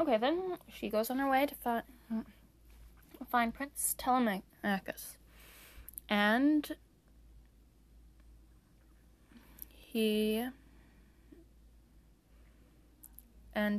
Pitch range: 185-235 Hz